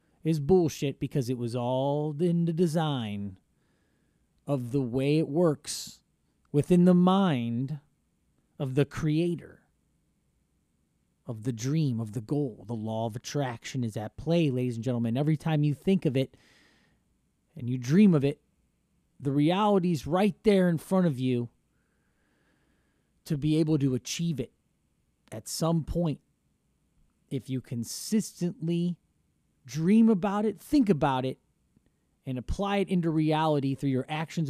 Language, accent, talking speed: English, American, 140 wpm